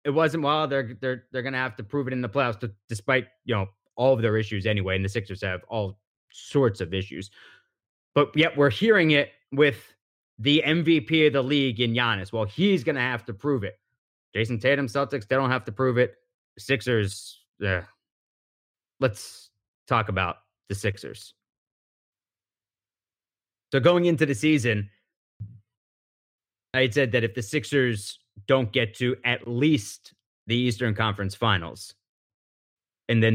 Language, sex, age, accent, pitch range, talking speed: English, male, 30-49, American, 100-130 Hz, 165 wpm